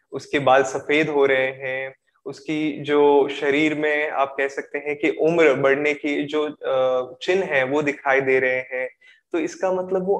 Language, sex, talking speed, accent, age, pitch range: Hindi, male, 175 wpm, native, 20-39, 140-165 Hz